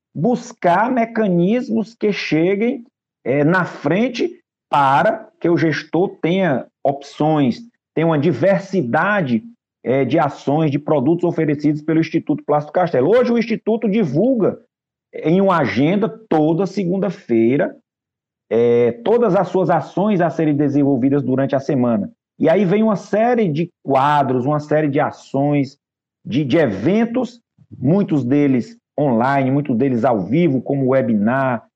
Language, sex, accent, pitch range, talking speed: Portuguese, male, Brazilian, 140-195 Hz, 125 wpm